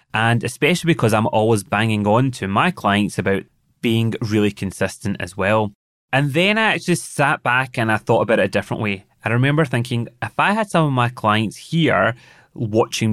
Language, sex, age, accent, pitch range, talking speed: English, male, 20-39, British, 105-130 Hz, 190 wpm